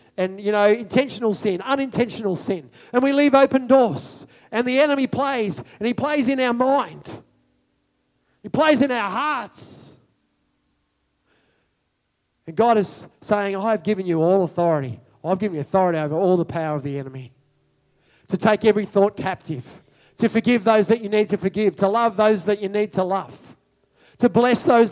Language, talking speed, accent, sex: English, 170 wpm, Australian, male